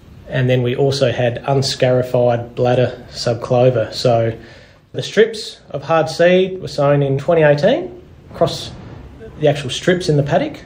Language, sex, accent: English, male, Australian